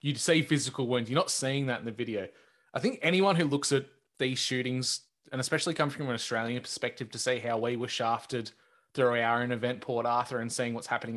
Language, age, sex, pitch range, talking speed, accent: English, 20-39, male, 120-150 Hz, 225 wpm, Australian